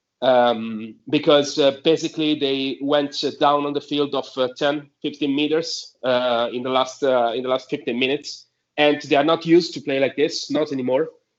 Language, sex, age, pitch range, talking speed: English, male, 40-59, 130-155 Hz, 195 wpm